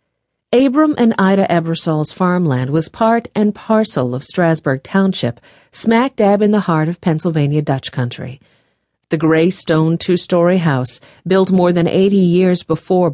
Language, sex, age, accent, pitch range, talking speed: English, female, 50-69, American, 145-195 Hz, 140 wpm